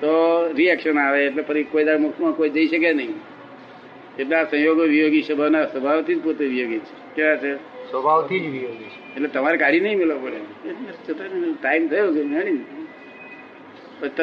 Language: Gujarati